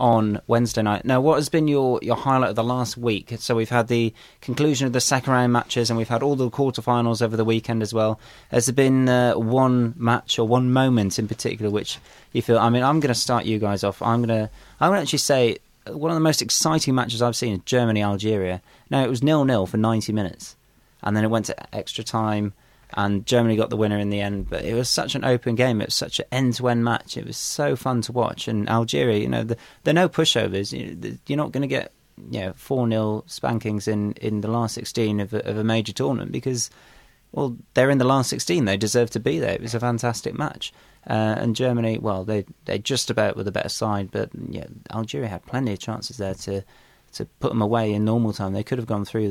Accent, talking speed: British, 245 wpm